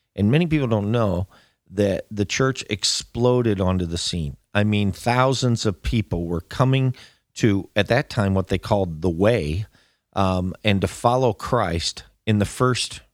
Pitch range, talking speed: 100-130 Hz, 165 wpm